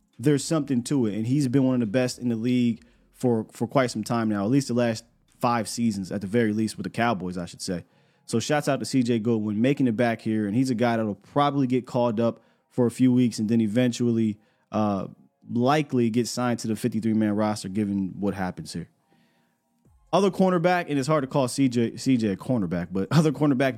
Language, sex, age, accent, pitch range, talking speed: English, male, 20-39, American, 110-140 Hz, 220 wpm